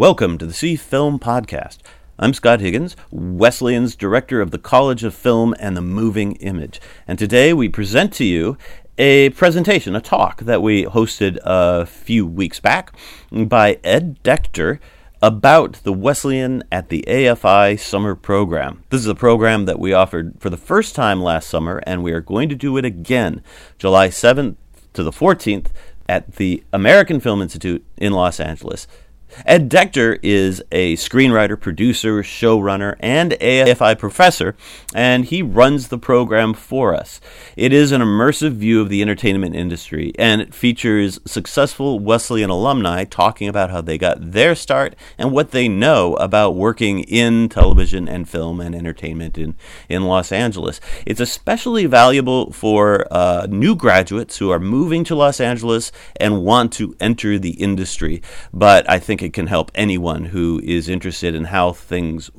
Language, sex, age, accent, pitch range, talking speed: English, male, 40-59, American, 90-125 Hz, 165 wpm